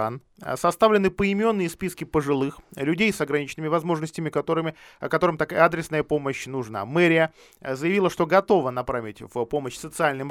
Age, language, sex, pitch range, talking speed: 20-39, Russian, male, 125-170 Hz, 120 wpm